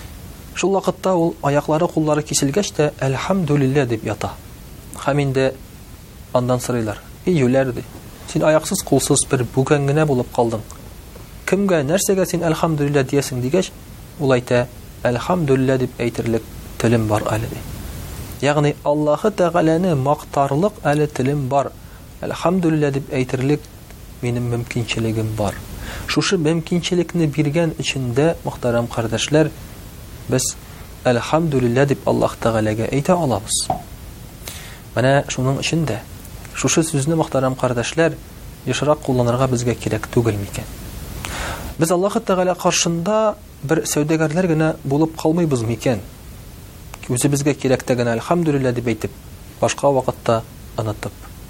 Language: Russian